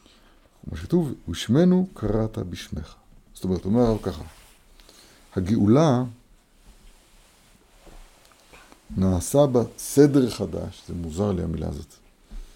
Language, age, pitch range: Hebrew, 60-79, 95-120 Hz